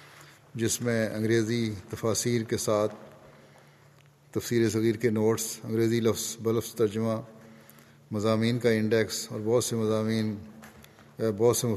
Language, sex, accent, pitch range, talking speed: English, male, Indian, 105-115 Hz, 65 wpm